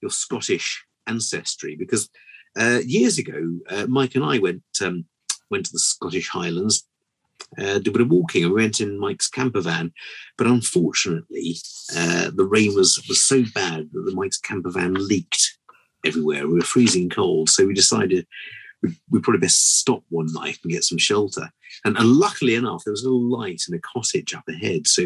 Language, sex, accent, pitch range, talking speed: English, male, British, 85-135 Hz, 190 wpm